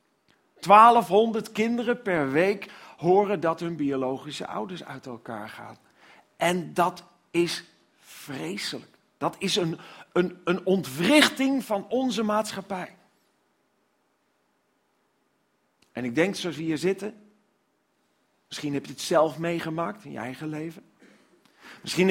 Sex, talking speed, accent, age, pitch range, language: male, 115 wpm, Dutch, 40-59, 165-220 Hz, Dutch